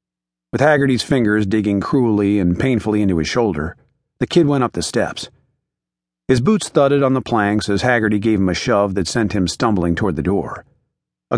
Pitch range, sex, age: 90-120 Hz, male, 40-59